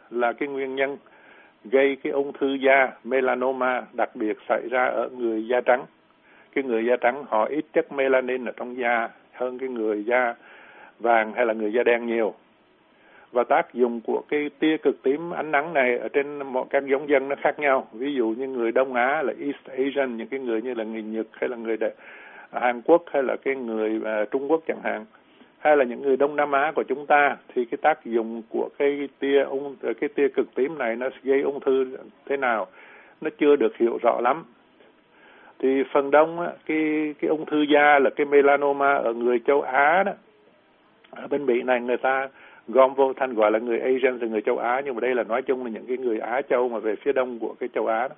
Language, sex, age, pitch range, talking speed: Vietnamese, male, 60-79, 120-145 Hz, 225 wpm